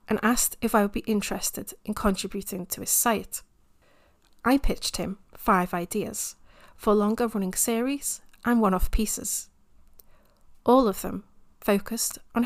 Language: English